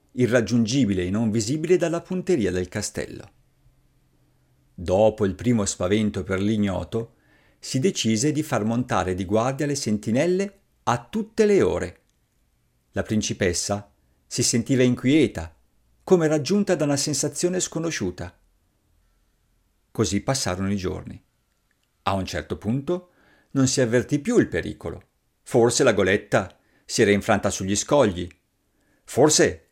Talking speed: 125 wpm